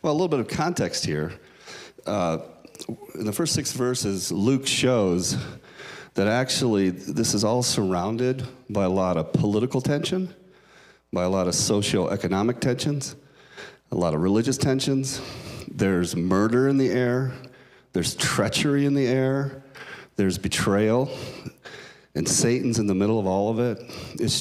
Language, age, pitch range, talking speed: English, 40-59, 95-130 Hz, 145 wpm